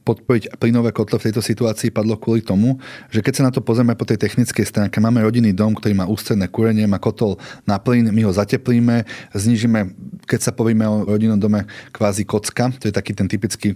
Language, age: Slovak, 30-49